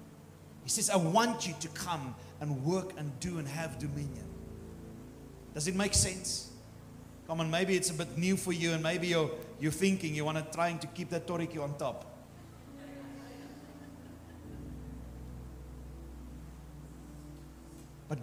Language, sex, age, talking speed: English, male, 40-59, 140 wpm